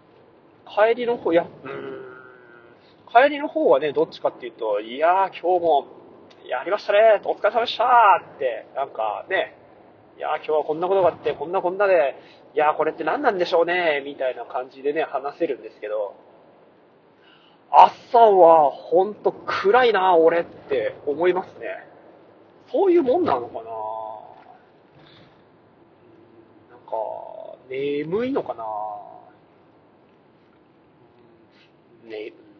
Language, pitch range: Japanese, 140-240 Hz